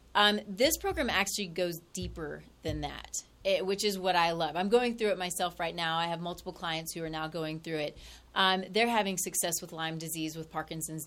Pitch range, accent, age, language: 160-195 Hz, American, 30-49, English